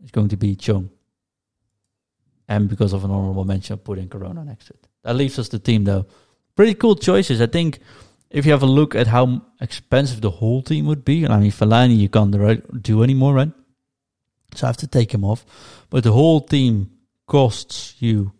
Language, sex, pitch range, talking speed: English, male, 105-130 Hz, 200 wpm